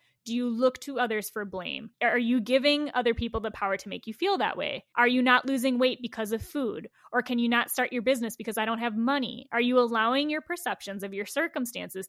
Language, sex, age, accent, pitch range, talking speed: English, female, 10-29, American, 220-295 Hz, 240 wpm